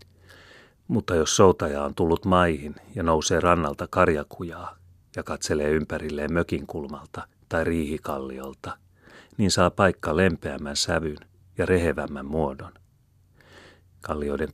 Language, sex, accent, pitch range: Finnish, male, native, 75-90 Hz